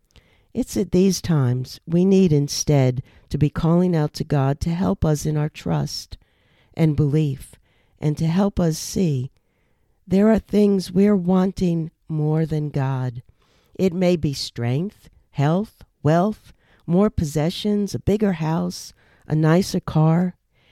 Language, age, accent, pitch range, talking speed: English, 50-69, American, 130-185 Hz, 140 wpm